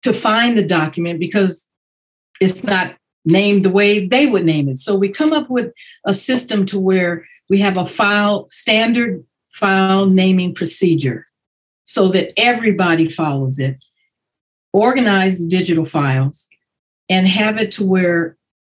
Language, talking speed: English, 145 wpm